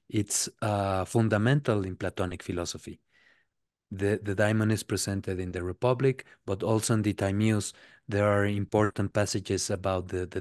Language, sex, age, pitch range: English, male, 30-49, 100-120 Hz